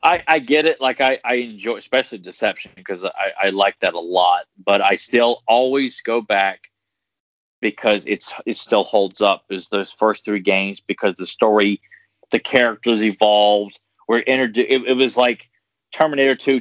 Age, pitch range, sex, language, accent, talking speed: 30-49, 105-135 Hz, male, English, American, 175 wpm